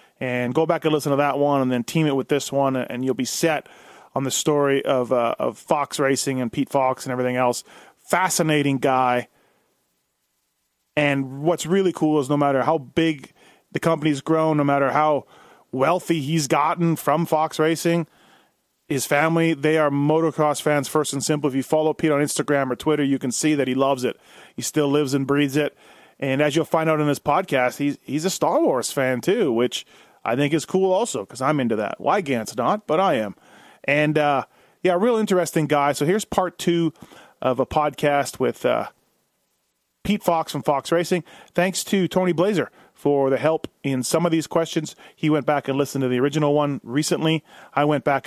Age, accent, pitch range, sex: 30-49, American, 135-160 Hz, male